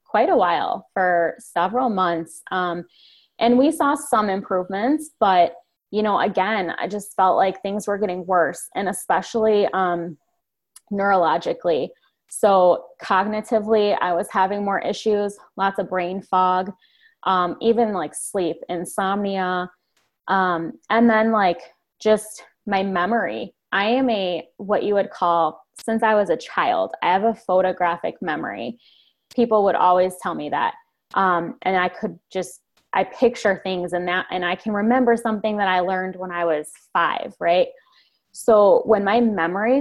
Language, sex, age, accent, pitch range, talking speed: English, female, 20-39, American, 180-220 Hz, 150 wpm